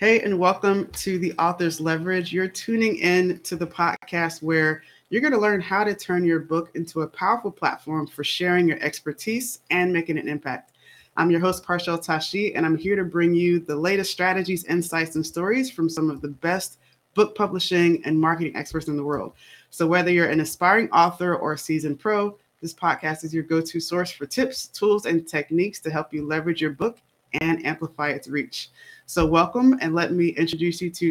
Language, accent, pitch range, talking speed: English, American, 155-185 Hz, 200 wpm